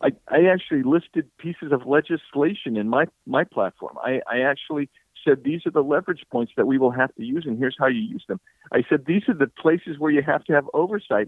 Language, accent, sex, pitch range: English, American, male, 115-155 Hz